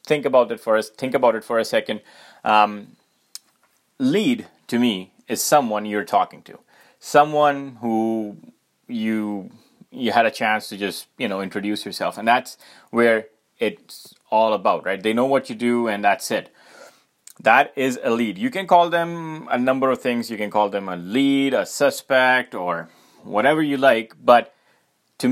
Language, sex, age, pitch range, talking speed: English, male, 30-49, 105-135 Hz, 175 wpm